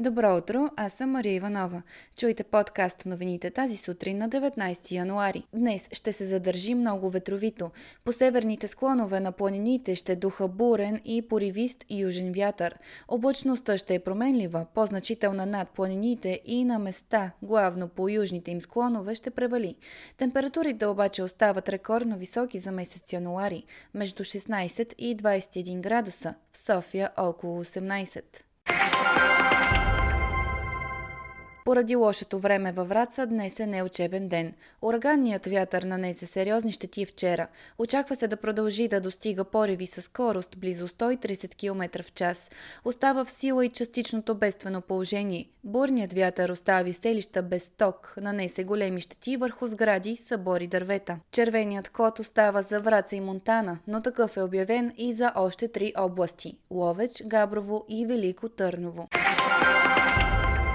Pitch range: 185-225 Hz